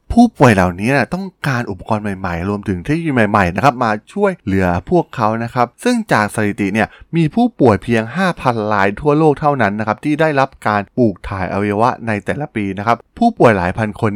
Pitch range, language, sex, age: 100-135 Hz, Thai, male, 20-39